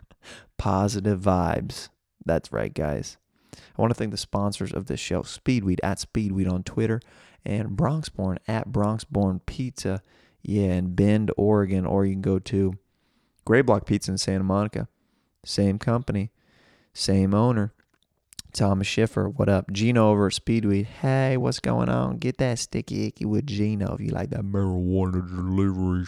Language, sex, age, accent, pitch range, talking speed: English, male, 20-39, American, 95-110 Hz, 150 wpm